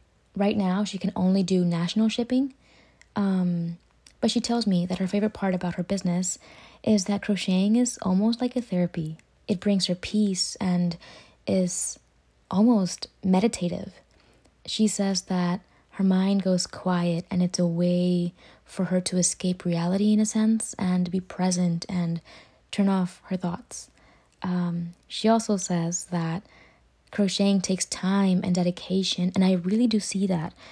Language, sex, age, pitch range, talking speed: English, female, 20-39, 180-205 Hz, 155 wpm